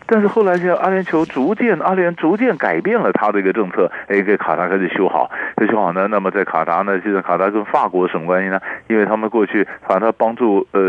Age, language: 50-69, Chinese